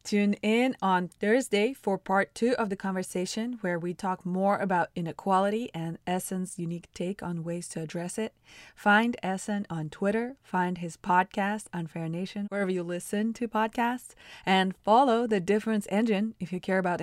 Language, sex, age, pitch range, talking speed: English, female, 20-39, 175-215 Hz, 175 wpm